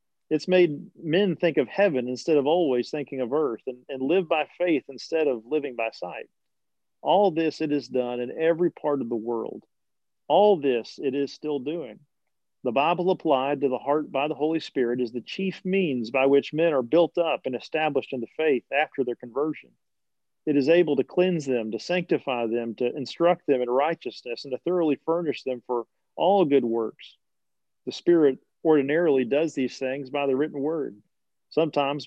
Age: 40-59